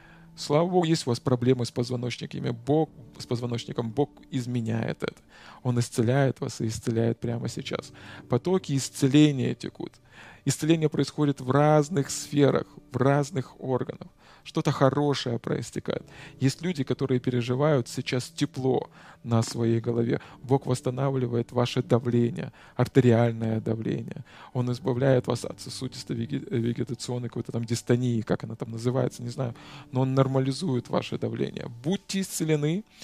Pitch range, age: 120-145 Hz, 20-39